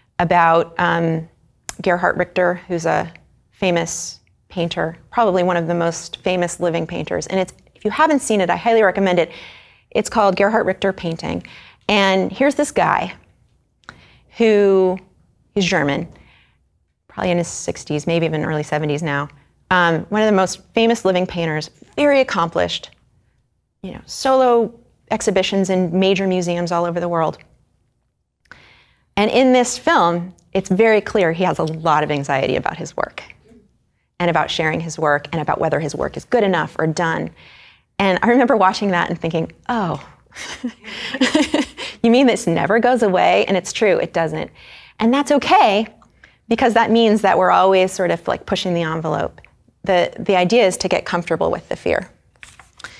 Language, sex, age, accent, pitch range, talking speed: English, female, 30-49, American, 170-220 Hz, 165 wpm